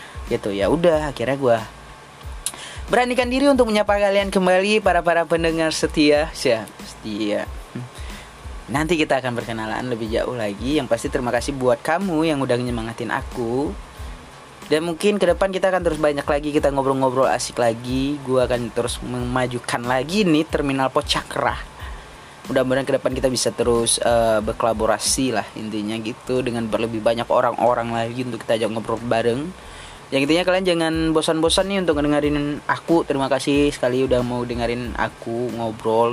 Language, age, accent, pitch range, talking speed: Indonesian, 20-39, native, 115-160 Hz, 155 wpm